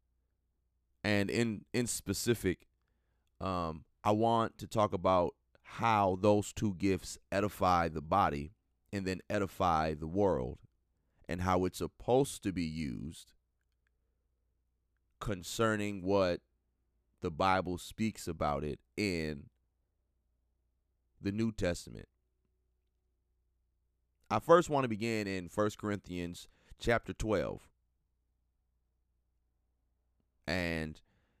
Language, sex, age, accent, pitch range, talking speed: English, male, 30-49, American, 65-105 Hz, 95 wpm